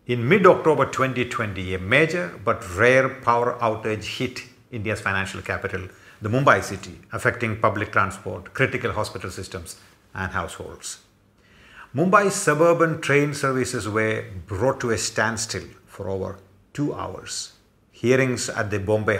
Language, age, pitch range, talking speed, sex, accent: English, 50-69, 100-120 Hz, 130 wpm, male, Indian